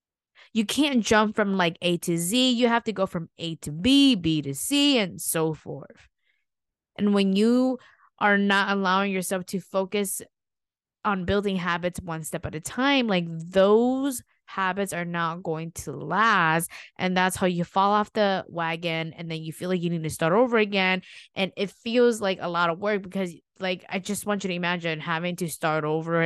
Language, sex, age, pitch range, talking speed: English, female, 20-39, 170-210 Hz, 195 wpm